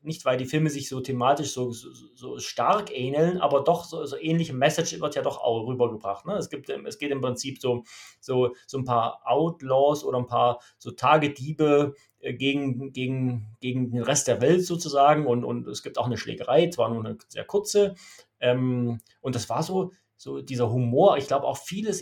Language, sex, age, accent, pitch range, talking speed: German, male, 30-49, German, 120-170 Hz, 190 wpm